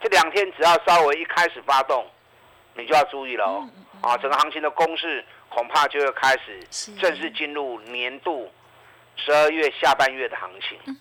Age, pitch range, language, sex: 50-69, 145-220 Hz, Chinese, male